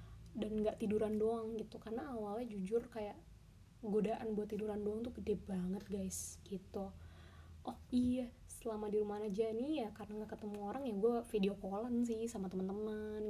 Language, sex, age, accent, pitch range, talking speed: Indonesian, female, 20-39, native, 200-225 Hz, 165 wpm